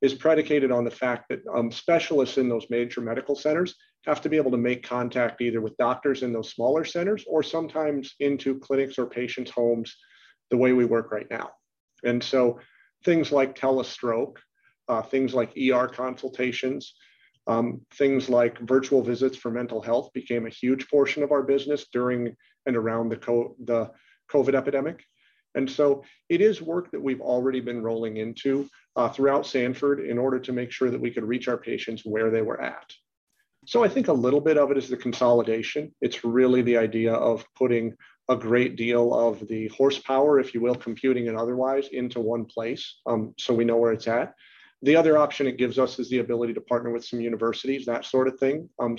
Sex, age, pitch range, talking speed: male, 40-59, 120-135 Hz, 195 wpm